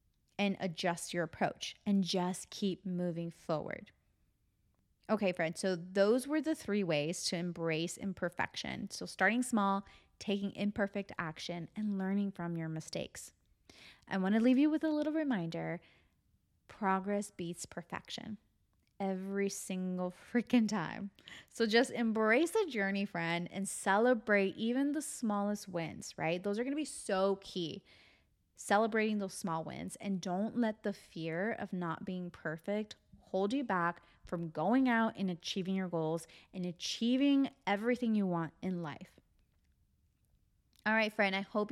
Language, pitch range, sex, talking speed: English, 175-220 Hz, female, 145 wpm